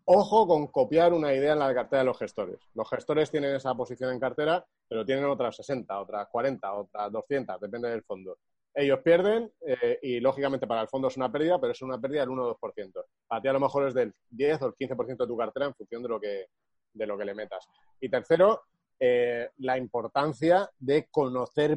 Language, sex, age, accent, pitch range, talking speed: Spanish, male, 30-49, Spanish, 120-160 Hz, 220 wpm